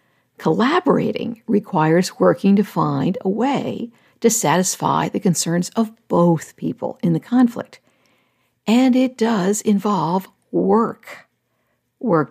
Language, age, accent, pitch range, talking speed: English, 60-79, American, 175-235 Hz, 110 wpm